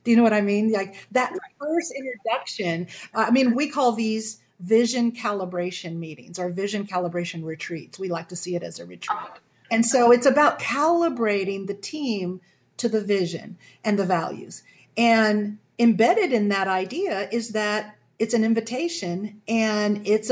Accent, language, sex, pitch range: American, English, female, 200-245 Hz